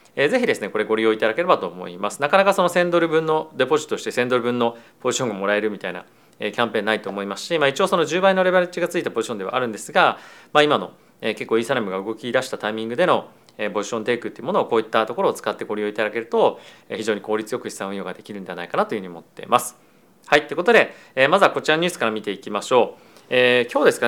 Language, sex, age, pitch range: Japanese, male, 40-59, 110-150 Hz